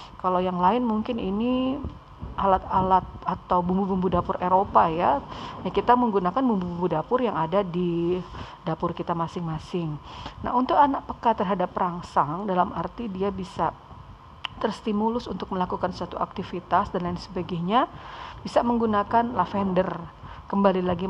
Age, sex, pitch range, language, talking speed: 40-59, female, 180-225 Hz, Indonesian, 130 wpm